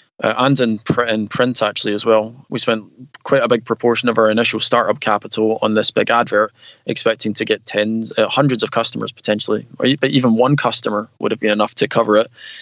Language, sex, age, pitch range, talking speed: English, male, 20-39, 110-120 Hz, 210 wpm